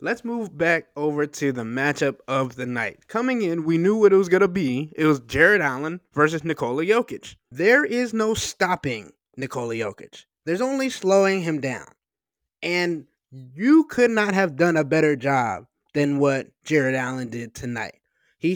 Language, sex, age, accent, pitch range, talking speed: English, male, 20-39, American, 145-215 Hz, 175 wpm